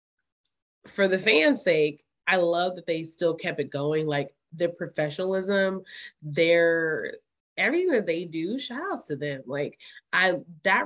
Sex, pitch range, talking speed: female, 145-190 Hz, 150 wpm